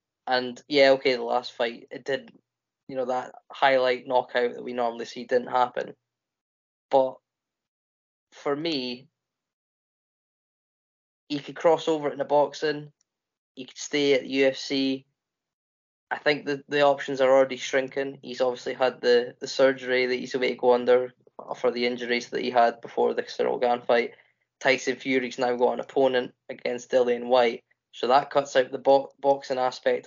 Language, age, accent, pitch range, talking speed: English, 10-29, British, 120-140 Hz, 165 wpm